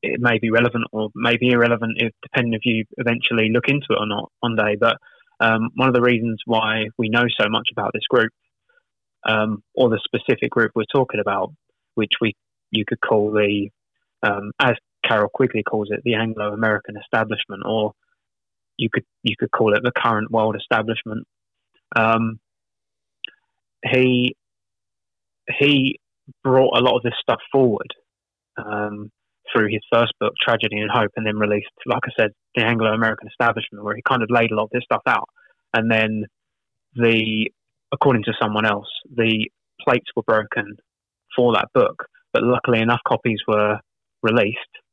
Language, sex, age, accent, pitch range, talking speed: English, male, 20-39, British, 105-120 Hz, 170 wpm